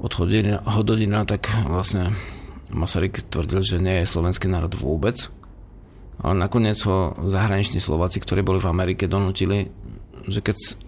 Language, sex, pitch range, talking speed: Slovak, male, 90-110 Hz, 140 wpm